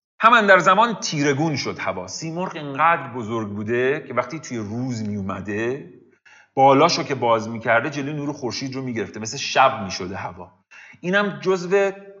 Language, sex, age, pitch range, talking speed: Persian, male, 40-59, 125-185 Hz, 170 wpm